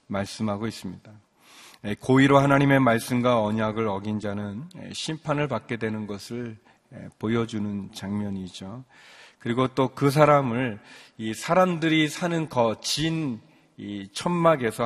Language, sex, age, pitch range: Korean, male, 40-59, 110-140 Hz